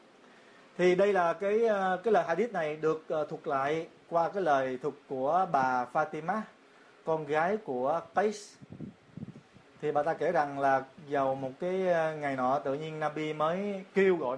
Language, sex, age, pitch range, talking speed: Vietnamese, male, 30-49, 135-175 Hz, 165 wpm